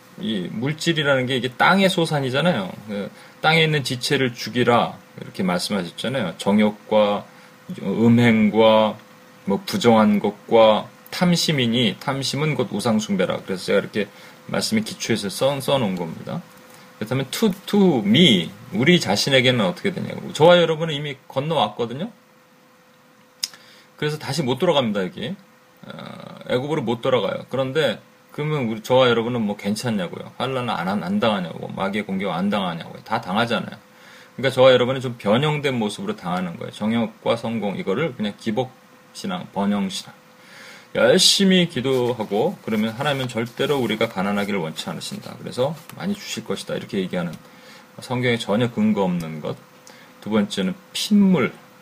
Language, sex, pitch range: Korean, male, 115-180 Hz